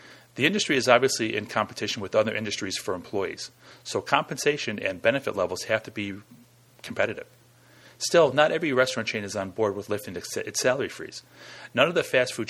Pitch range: 95-120 Hz